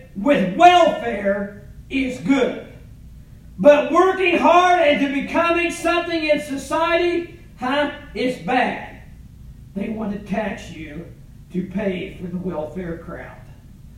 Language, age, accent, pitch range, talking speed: English, 50-69, American, 180-290 Hz, 115 wpm